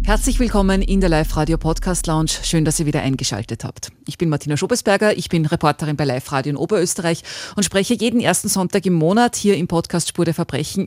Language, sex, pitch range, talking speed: German, female, 165-220 Hz, 205 wpm